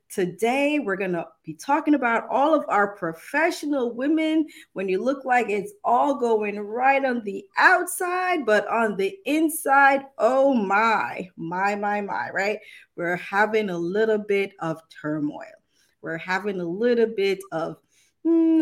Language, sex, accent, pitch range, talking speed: English, female, American, 205-295 Hz, 150 wpm